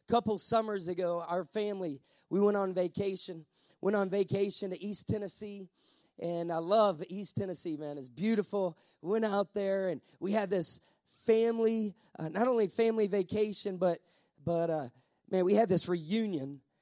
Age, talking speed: 30-49, 155 wpm